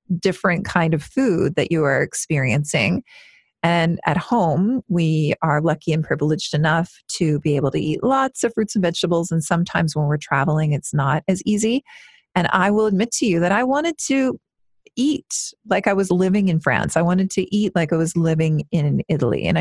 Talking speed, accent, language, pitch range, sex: 195 wpm, American, English, 160-210 Hz, female